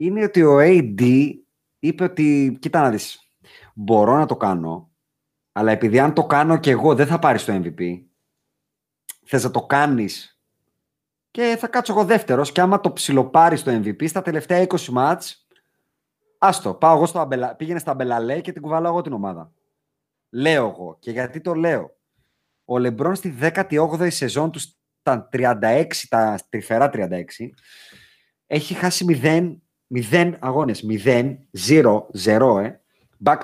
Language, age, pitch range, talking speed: Greek, 30-49, 125-170 Hz, 150 wpm